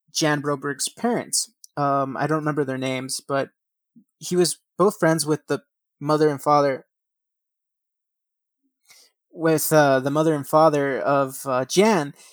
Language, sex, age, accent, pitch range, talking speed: English, male, 20-39, American, 140-165 Hz, 135 wpm